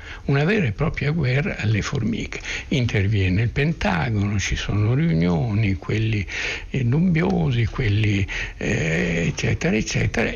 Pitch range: 105-130 Hz